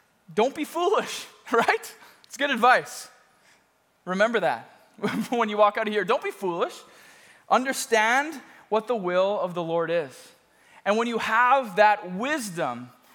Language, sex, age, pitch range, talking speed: English, male, 20-39, 180-240 Hz, 145 wpm